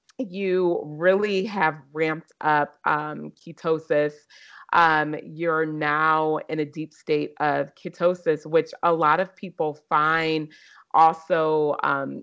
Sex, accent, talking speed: female, American, 120 wpm